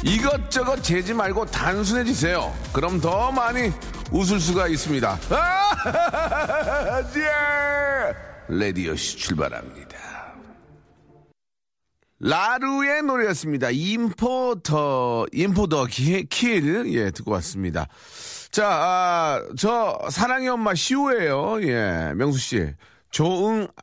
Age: 40-59